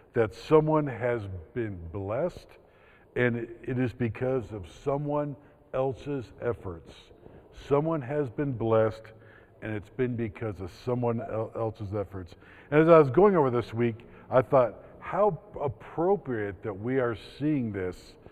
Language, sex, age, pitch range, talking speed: English, male, 50-69, 110-135 Hz, 140 wpm